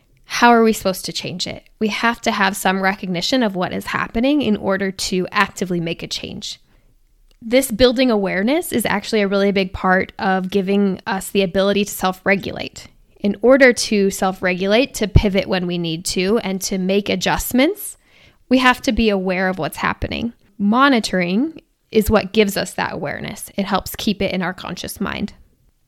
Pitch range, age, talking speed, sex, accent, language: 190-230 Hz, 10-29, 180 wpm, female, American, English